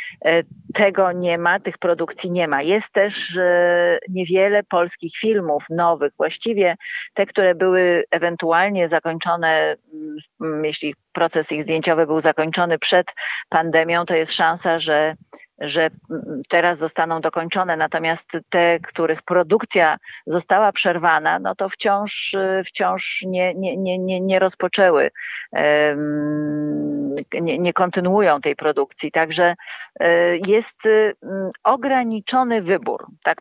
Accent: native